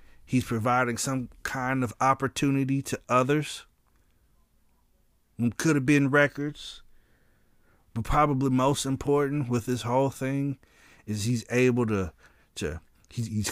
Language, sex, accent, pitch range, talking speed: English, male, American, 105-140 Hz, 120 wpm